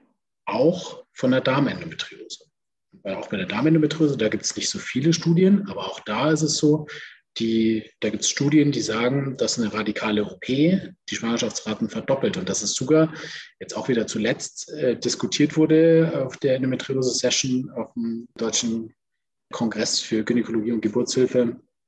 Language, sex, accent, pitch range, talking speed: German, male, German, 120-155 Hz, 160 wpm